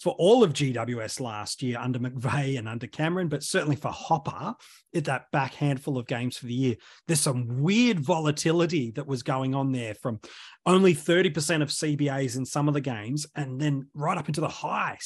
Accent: Australian